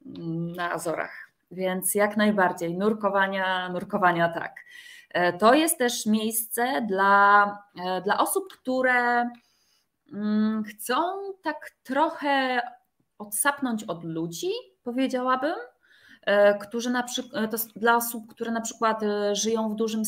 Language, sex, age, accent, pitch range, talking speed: Polish, female, 20-39, native, 190-225 Hz, 95 wpm